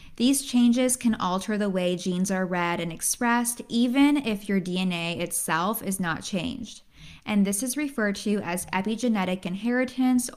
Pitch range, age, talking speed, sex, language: 185-235 Hz, 20-39, 155 wpm, female, English